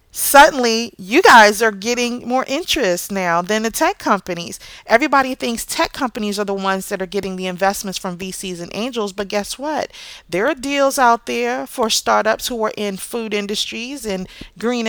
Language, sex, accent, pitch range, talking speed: English, female, American, 205-275 Hz, 180 wpm